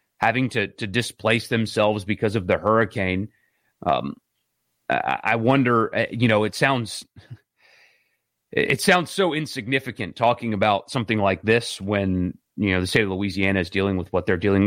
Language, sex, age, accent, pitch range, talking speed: English, male, 30-49, American, 100-120 Hz, 155 wpm